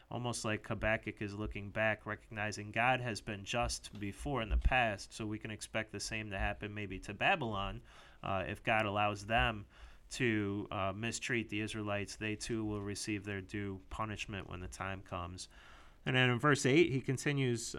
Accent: American